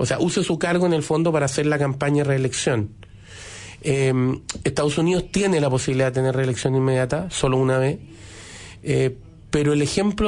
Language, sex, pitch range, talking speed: Spanish, male, 140-175 Hz, 180 wpm